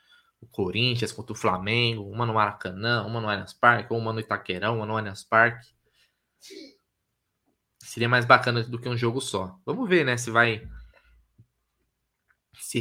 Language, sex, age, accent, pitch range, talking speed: Portuguese, male, 20-39, Brazilian, 115-140 Hz, 155 wpm